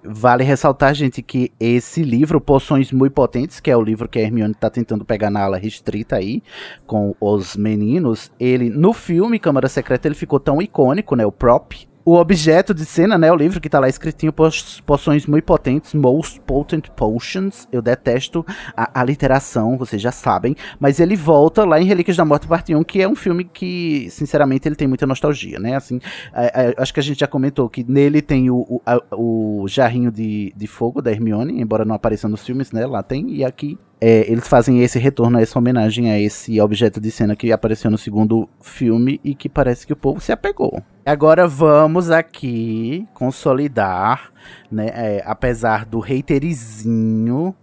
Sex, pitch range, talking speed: male, 115-155 Hz, 185 wpm